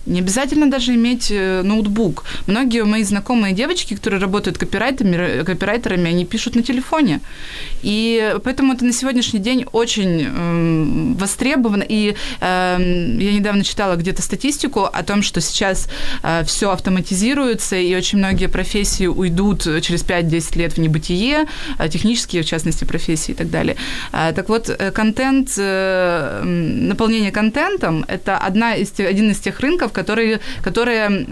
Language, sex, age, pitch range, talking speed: Ukrainian, female, 20-39, 175-220 Hz, 125 wpm